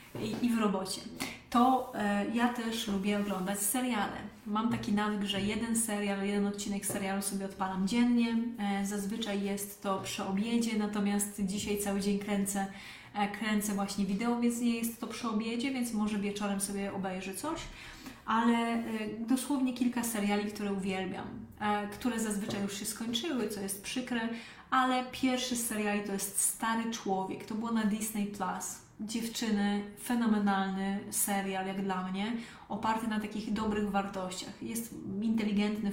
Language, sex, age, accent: Polish, female, 30-49, native